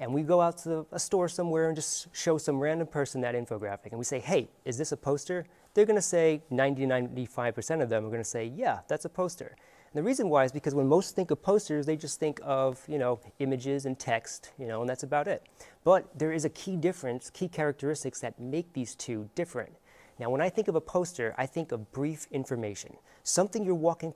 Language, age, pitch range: English, 30-49, 130-170 Hz